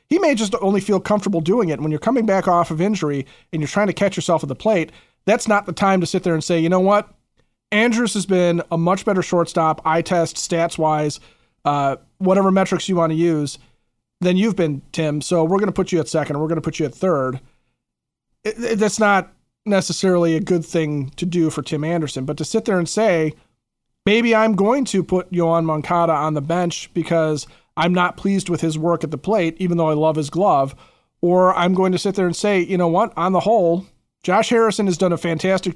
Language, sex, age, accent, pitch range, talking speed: English, male, 40-59, American, 160-200 Hz, 230 wpm